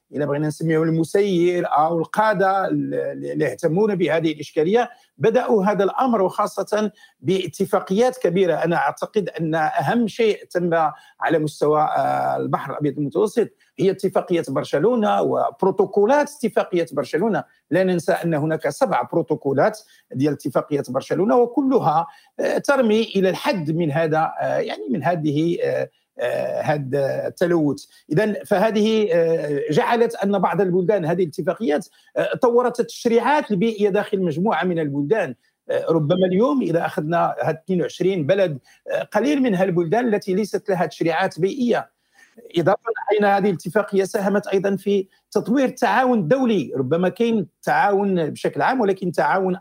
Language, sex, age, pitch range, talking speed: Arabic, male, 50-69, 160-215 Hz, 125 wpm